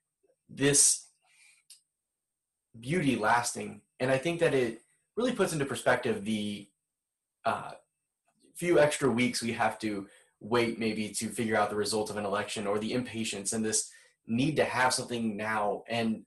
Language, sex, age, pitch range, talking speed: English, male, 20-39, 105-130 Hz, 150 wpm